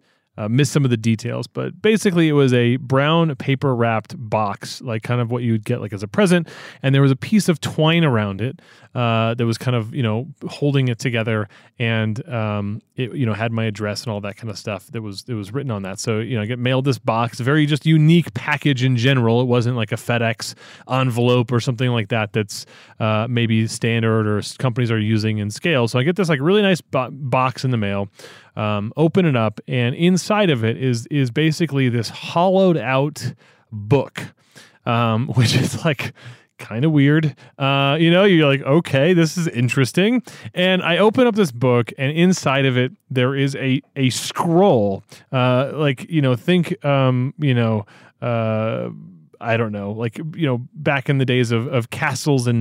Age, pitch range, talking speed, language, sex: 30-49, 115-150 Hz, 205 wpm, English, male